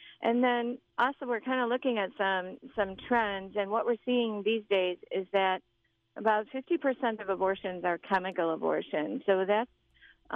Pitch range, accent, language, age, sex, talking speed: 175-210 Hz, American, English, 40-59, female, 170 wpm